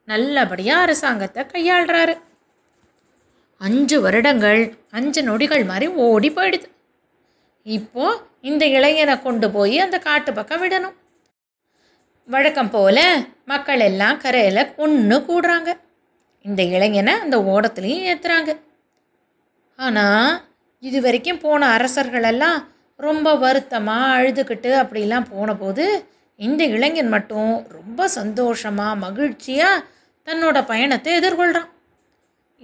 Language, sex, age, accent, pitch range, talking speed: Tamil, female, 20-39, native, 215-320 Hz, 90 wpm